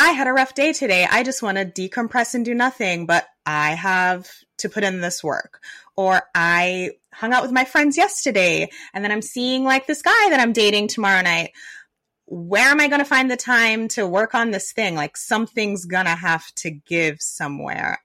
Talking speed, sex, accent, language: 210 wpm, female, American, English